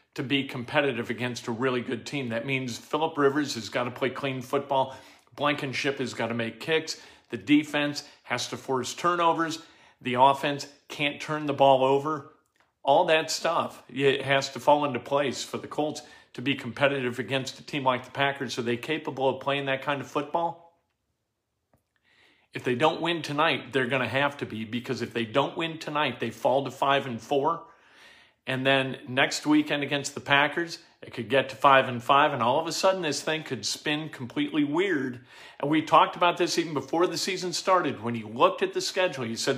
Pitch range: 130-155 Hz